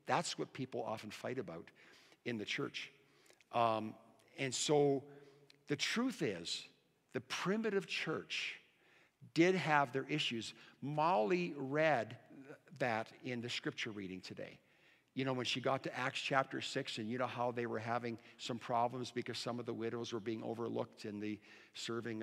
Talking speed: 160 wpm